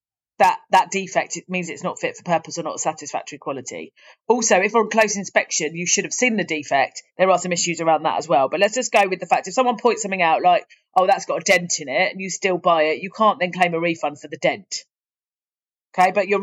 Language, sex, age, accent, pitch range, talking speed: English, female, 30-49, British, 175-210 Hz, 265 wpm